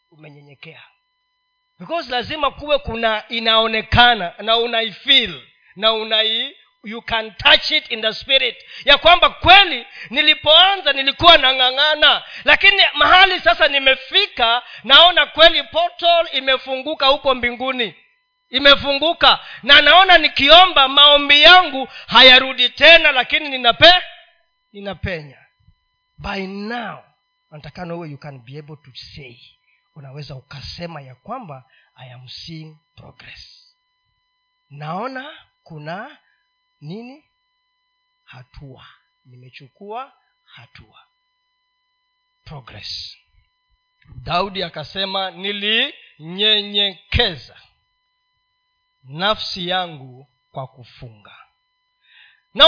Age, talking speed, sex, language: 40-59, 95 wpm, male, Swahili